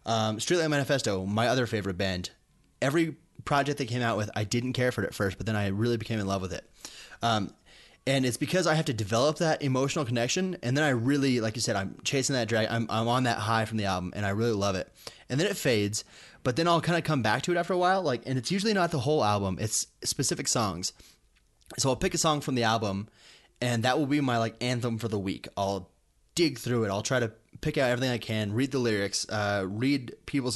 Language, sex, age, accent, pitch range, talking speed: English, male, 20-39, American, 105-135 Hz, 250 wpm